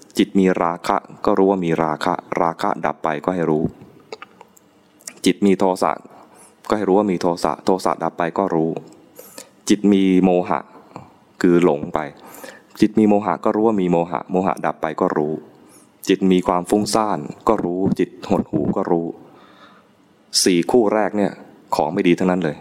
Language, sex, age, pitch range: English, male, 20-39, 90-105 Hz